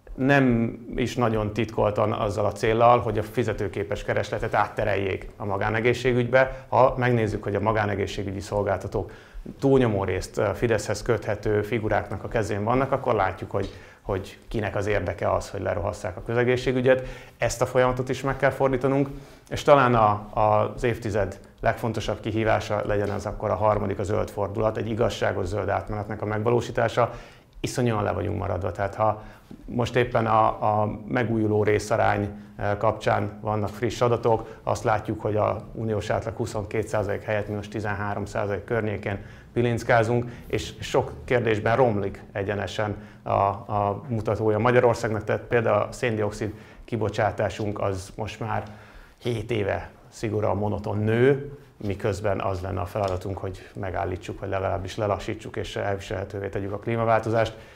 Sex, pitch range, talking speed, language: male, 105-120 Hz, 140 wpm, Hungarian